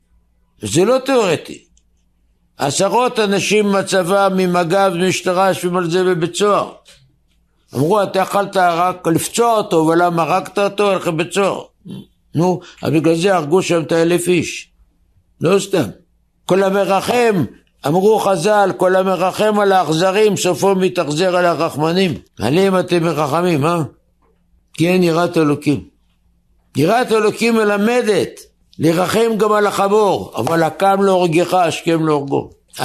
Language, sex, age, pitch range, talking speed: Hebrew, male, 60-79, 165-200 Hz, 125 wpm